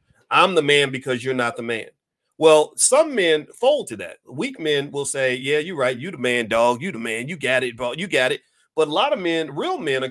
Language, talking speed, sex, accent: English, 255 wpm, male, American